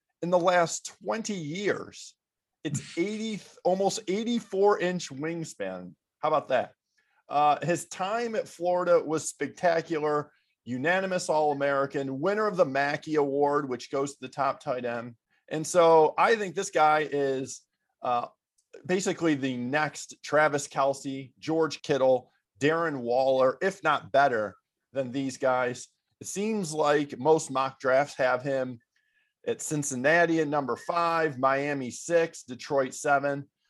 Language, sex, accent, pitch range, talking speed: English, male, American, 135-185 Hz, 135 wpm